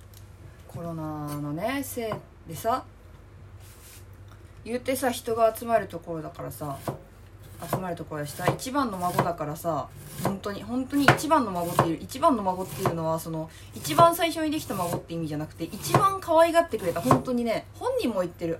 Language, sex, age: Japanese, female, 20-39